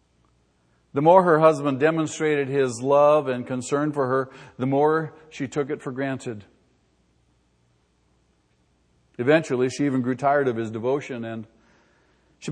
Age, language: 50-69, English